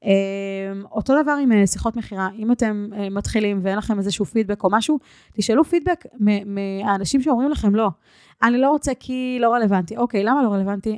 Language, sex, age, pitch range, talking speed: Hebrew, female, 20-39, 195-245 Hz, 165 wpm